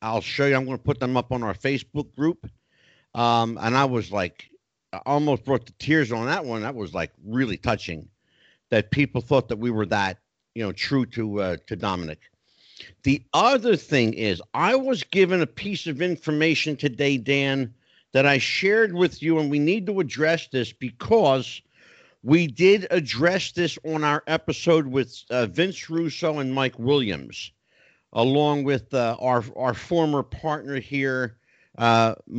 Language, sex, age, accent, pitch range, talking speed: English, male, 50-69, American, 120-160 Hz, 170 wpm